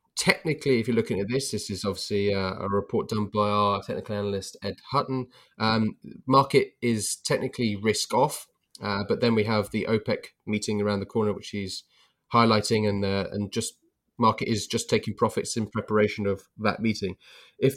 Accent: British